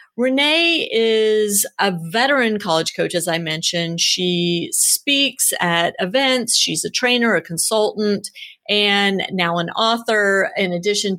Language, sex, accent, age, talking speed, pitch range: English, female, American, 30-49, 130 wpm, 180-220 Hz